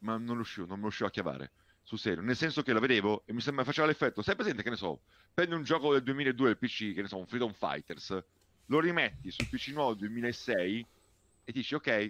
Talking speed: 245 wpm